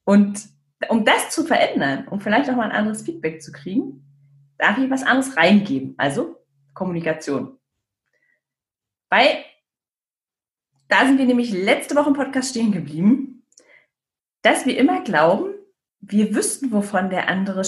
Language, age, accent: German, 30-49, German